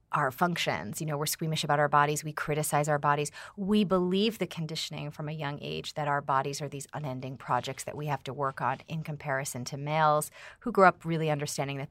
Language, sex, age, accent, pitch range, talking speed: English, female, 30-49, American, 140-185 Hz, 220 wpm